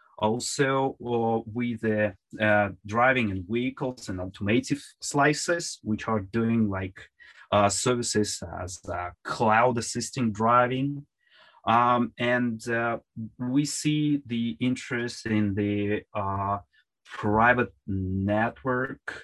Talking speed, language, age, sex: 105 wpm, English, 30-49, male